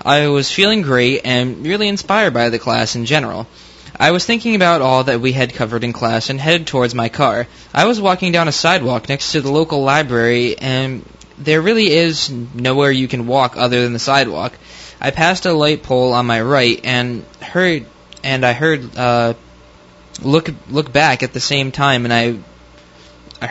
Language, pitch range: English, 120-150 Hz